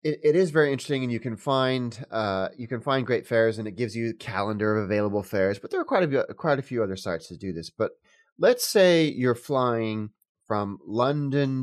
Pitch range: 105-135 Hz